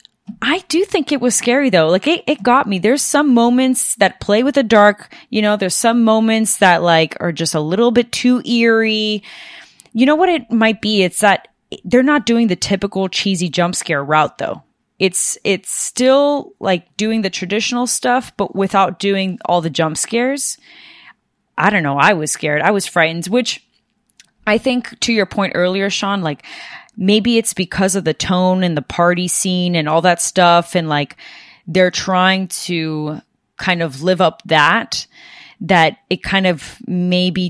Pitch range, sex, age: 170-225 Hz, female, 20-39